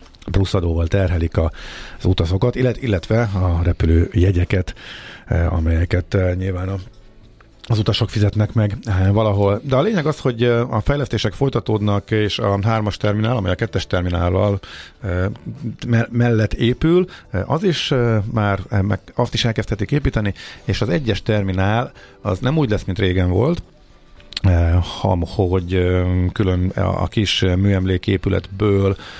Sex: male